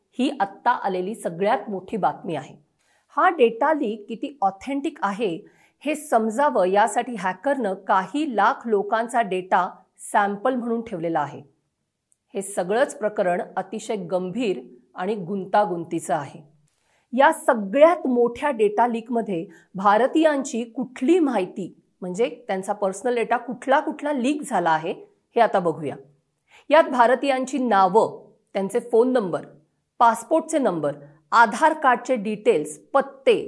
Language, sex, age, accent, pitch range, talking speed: Marathi, female, 50-69, native, 195-275 Hz, 90 wpm